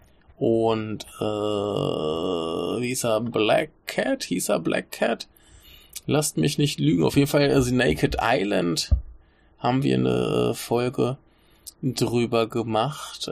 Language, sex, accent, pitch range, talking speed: German, male, German, 95-140 Hz, 125 wpm